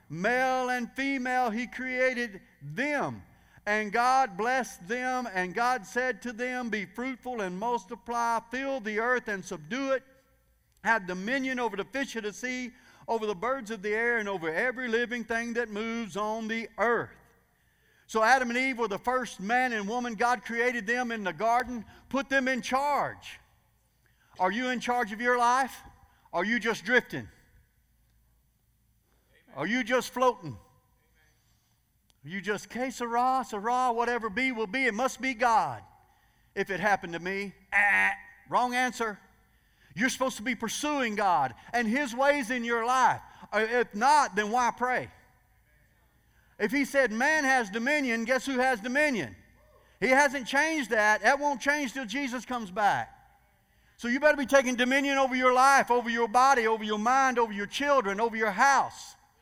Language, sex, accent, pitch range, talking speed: English, male, American, 215-260 Hz, 170 wpm